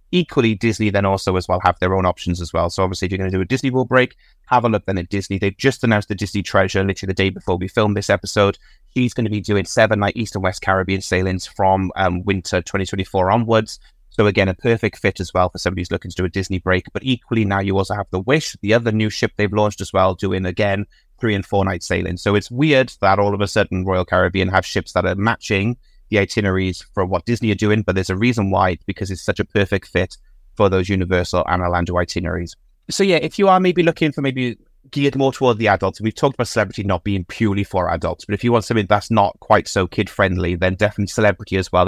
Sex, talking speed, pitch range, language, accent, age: male, 255 wpm, 90-110 Hz, English, British, 30-49